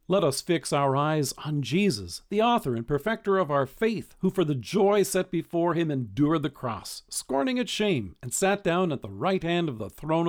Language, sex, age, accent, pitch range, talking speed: English, male, 50-69, American, 130-190 Hz, 215 wpm